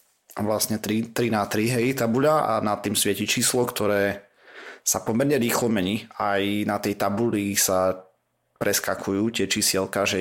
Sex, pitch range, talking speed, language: male, 100-120 Hz, 155 wpm, Slovak